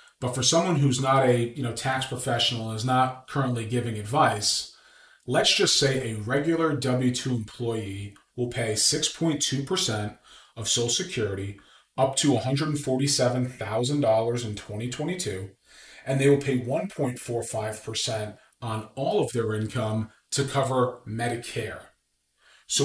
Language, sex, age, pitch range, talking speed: English, male, 30-49, 115-140 Hz, 125 wpm